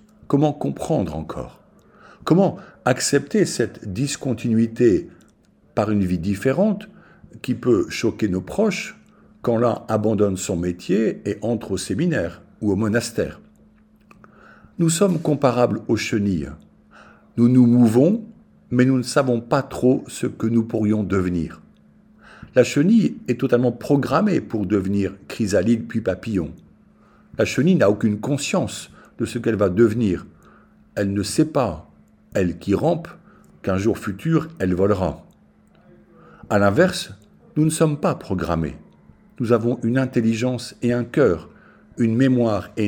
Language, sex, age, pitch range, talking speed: French, male, 60-79, 100-135 Hz, 135 wpm